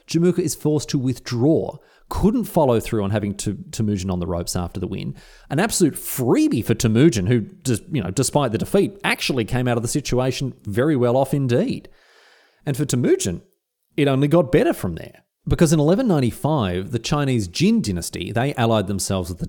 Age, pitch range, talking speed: 30-49, 100-145 Hz, 190 wpm